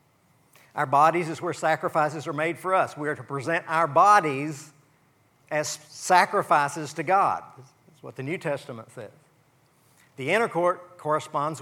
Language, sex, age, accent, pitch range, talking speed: English, male, 50-69, American, 140-165 Hz, 150 wpm